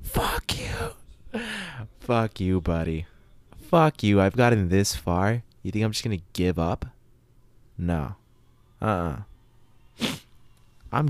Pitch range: 90-120 Hz